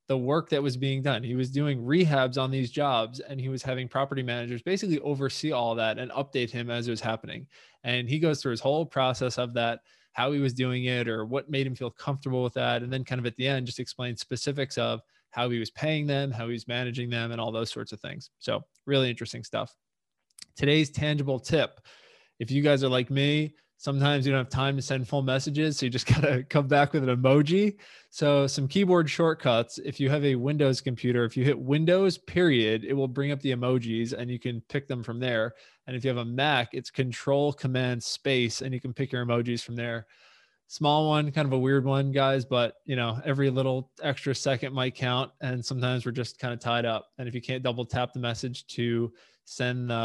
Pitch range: 120-140 Hz